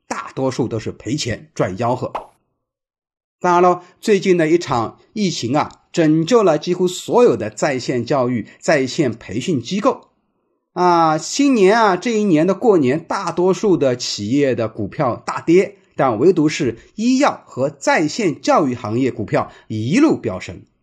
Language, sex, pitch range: Chinese, male, 130-210 Hz